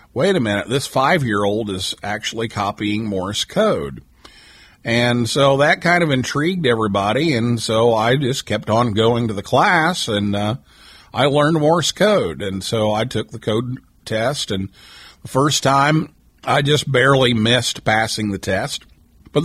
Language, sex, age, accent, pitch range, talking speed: English, male, 50-69, American, 105-135 Hz, 160 wpm